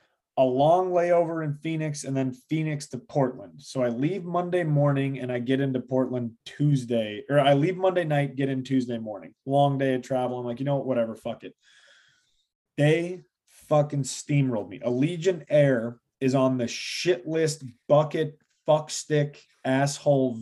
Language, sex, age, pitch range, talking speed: English, male, 20-39, 130-155 Hz, 170 wpm